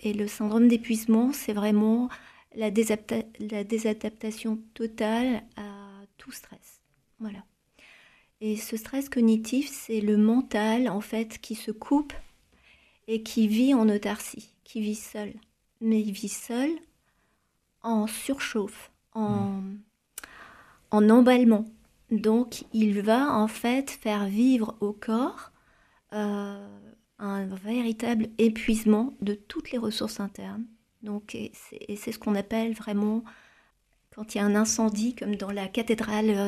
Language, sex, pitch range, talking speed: French, female, 210-235 Hz, 135 wpm